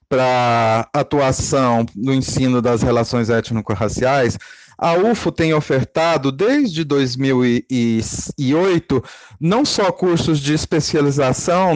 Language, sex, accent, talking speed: Portuguese, male, Brazilian, 90 wpm